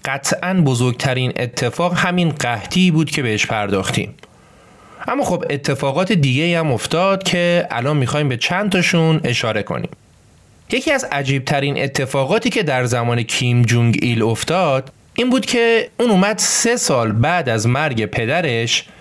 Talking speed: 140 wpm